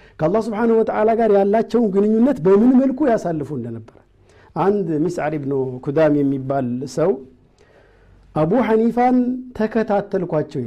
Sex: male